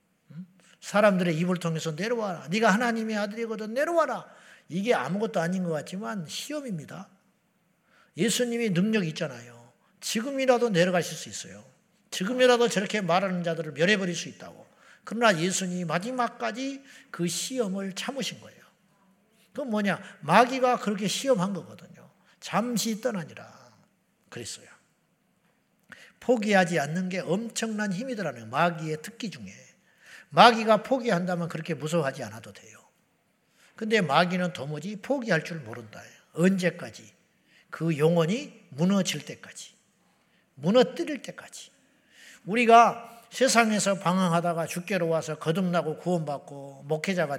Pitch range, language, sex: 165-225 Hz, Korean, male